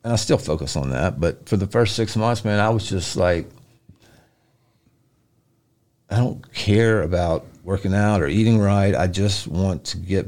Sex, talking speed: male, 180 wpm